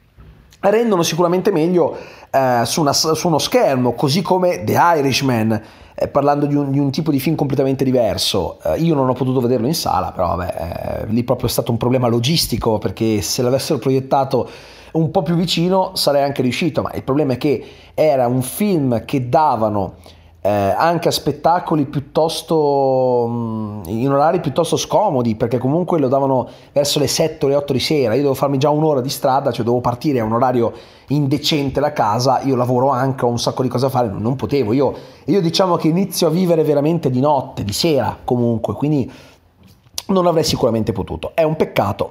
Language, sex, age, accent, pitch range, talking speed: Italian, male, 30-49, native, 120-160 Hz, 190 wpm